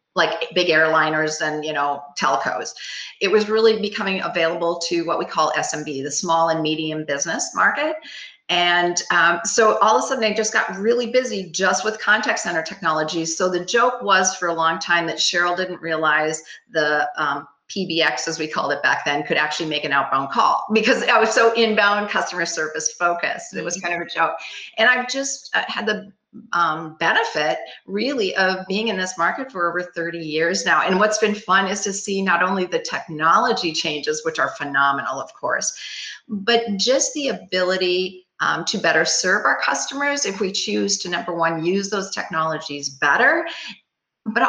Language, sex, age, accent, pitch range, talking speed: English, female, 40-59, American, 165-215 Hz, 185 wpm